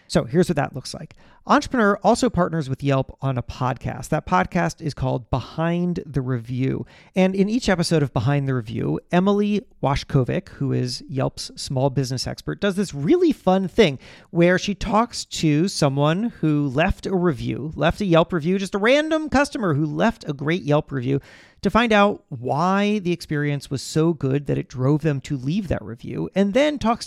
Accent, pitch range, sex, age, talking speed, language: American, 140-205 Hz, male, 40-59, 190 wpm, English